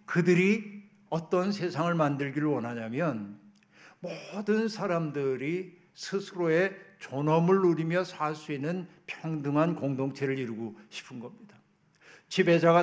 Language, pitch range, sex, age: Korean, 155-185 Hz, male, 60-79